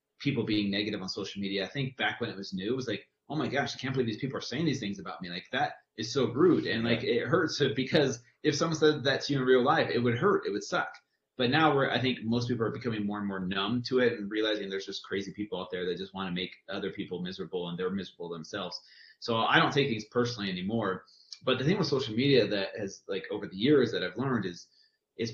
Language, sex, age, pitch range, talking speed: English, male, 30-49, 105-135 Hz, 270 wpm